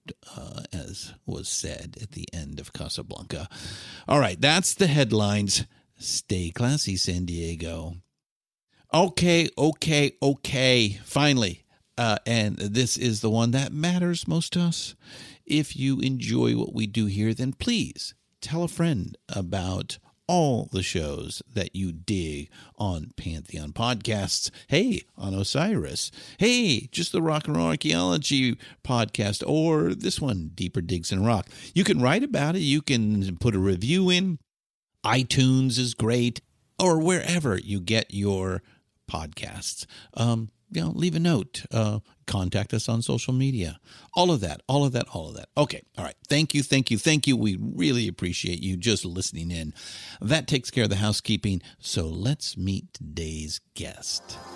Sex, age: male, 50-69